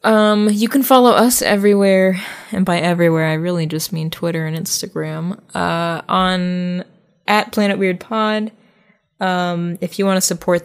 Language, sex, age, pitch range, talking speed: English, female, 20-39, 175-220 Hz, 160 wpm